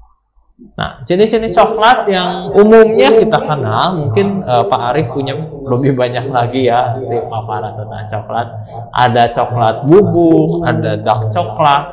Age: 20-39